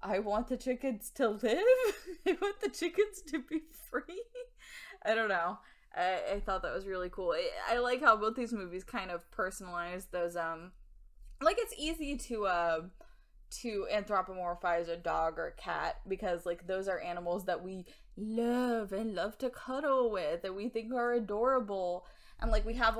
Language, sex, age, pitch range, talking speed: English, female, 10-29, 180-245 Hz, 185 wpm